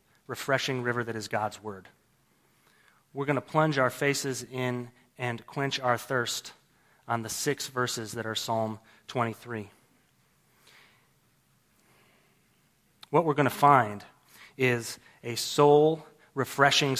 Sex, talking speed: male, 115 wpm